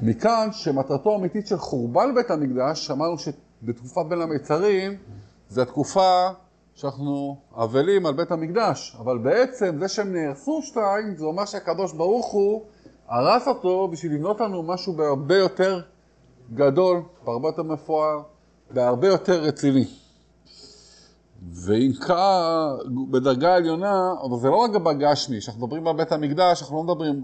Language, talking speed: Hebrew, 140 wpm